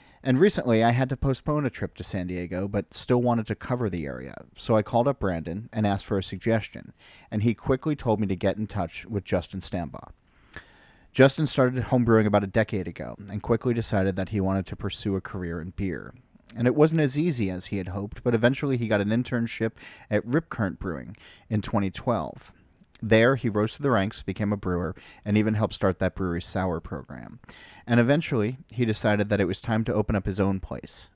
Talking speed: 215 wpm